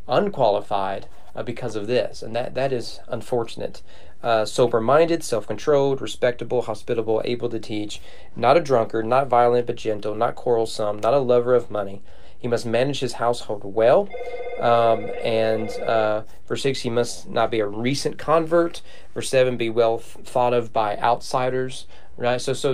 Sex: male